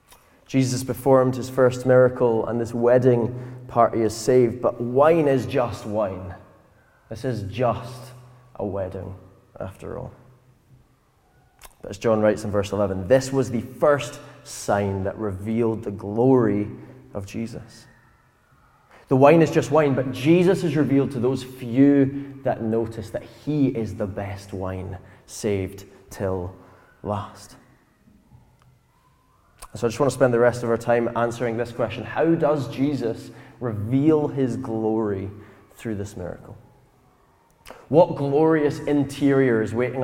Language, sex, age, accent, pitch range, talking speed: English, male, 20-39, British, 100-130 Hz, 140 wpm